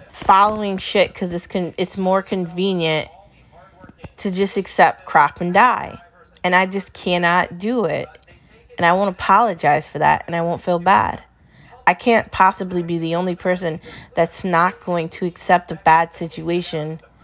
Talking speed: 160 wpm